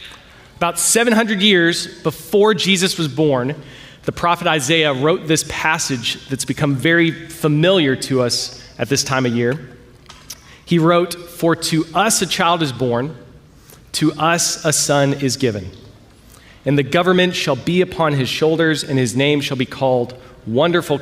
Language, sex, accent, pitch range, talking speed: English, male, American, 125-170 Hz, 155 wpm